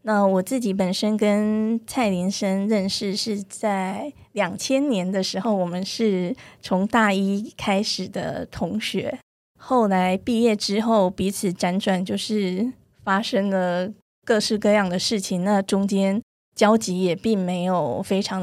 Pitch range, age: 185-215 Hz, 20-39